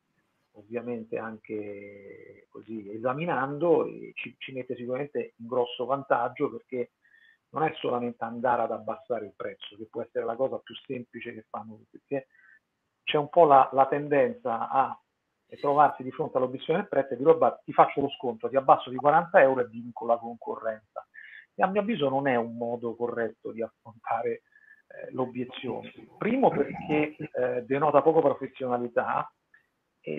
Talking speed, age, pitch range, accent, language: 160 wpm, 40-59, 120-155 Hz, native, Italian